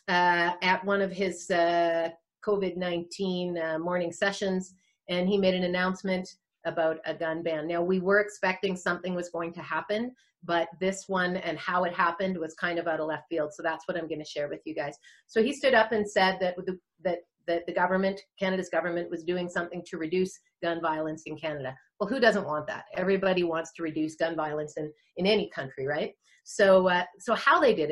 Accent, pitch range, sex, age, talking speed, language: American, 170-200 Hz, female, 40-59, 200 wpm, English